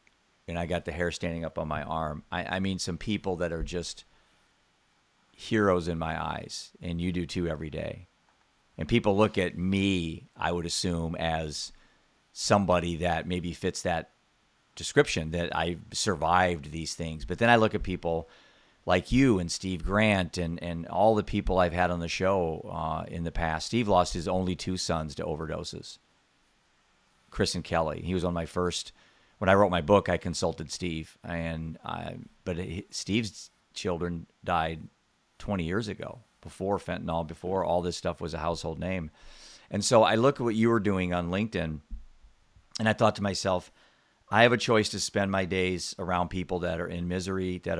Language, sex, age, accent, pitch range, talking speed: English, male, 40-59, American, 85-95 Hz, 185 wpm